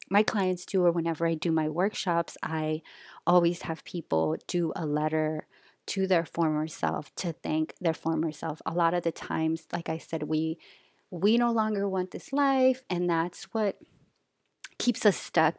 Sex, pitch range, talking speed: female, 160-190 Hz, 175 wpm